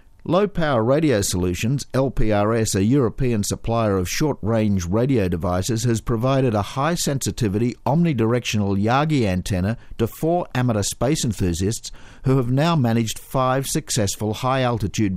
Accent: Australian